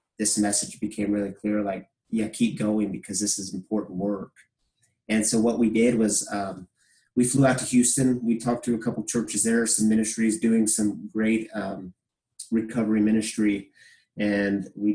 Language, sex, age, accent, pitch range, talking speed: English, male, 30-49, American, 110-130 Hz, 175 wpm